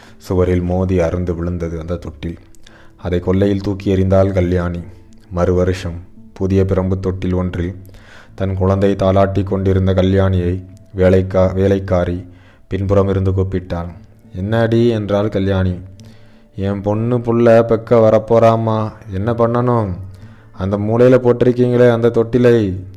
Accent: native